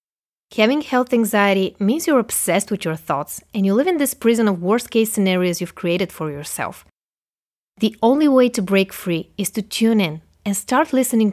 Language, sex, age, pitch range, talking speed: English, female, 20-39, 180-230 Hz, 190 wpm